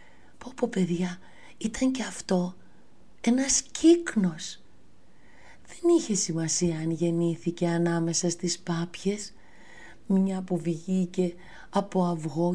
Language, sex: Greek, female